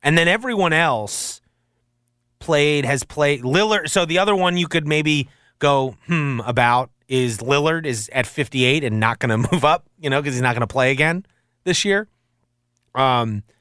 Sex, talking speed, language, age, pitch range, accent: male, 180 wpm, English, 30-49, 120-160 Hz, American